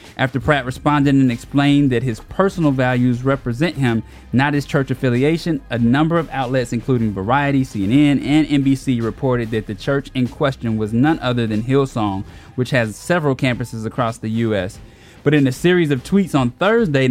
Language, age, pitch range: English, 20-39, 115-145 Hz